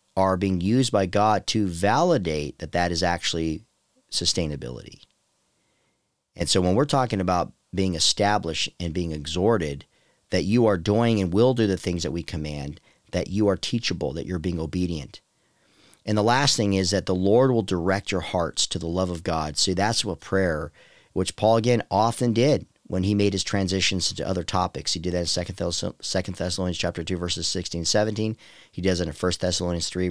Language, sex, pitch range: English, male, 90-115 Hz